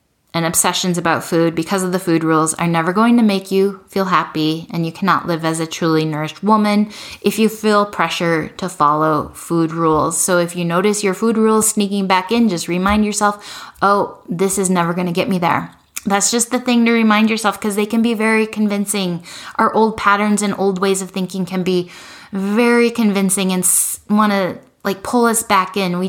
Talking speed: 205 wpm